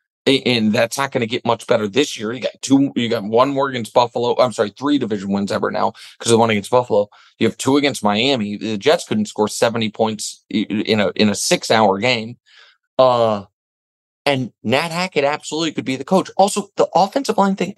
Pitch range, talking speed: 110-155 Hz, 215 wpm